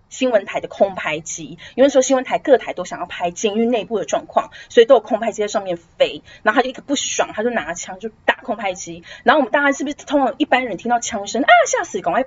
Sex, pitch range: female, 215-290 Hz